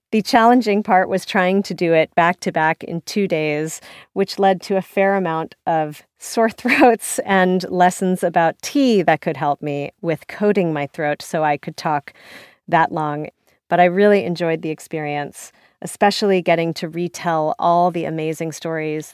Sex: female